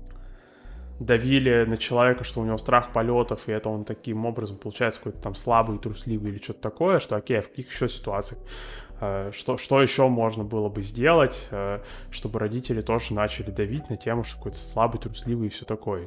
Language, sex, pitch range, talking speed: Russian, male, 105-125 Hz, 185 wpm